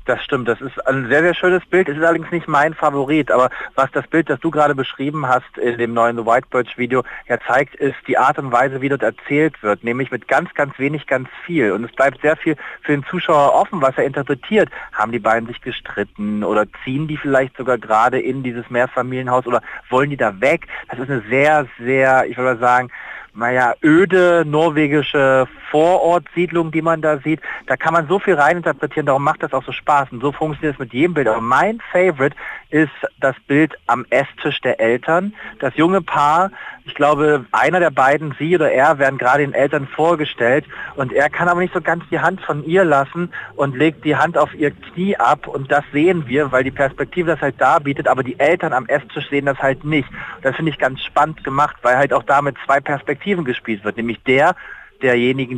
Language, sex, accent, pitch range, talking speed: German, male, German, 130-160 Hz, 215 wpm